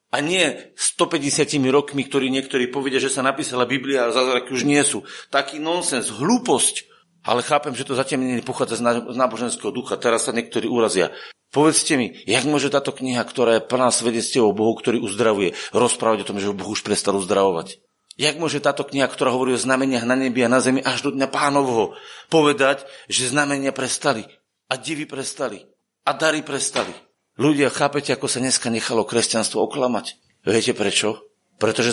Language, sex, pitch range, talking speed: Slovak, male, 110-140 Hz, 175 wpm